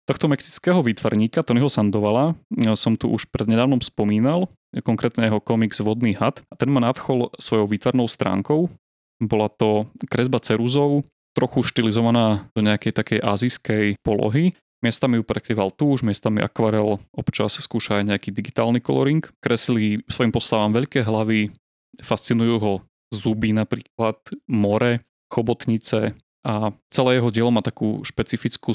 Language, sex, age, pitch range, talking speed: Slovak, male, 30-49, 105-125 Hz, 135 wpm